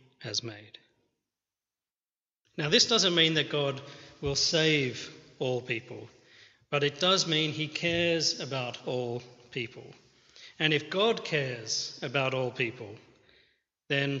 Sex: male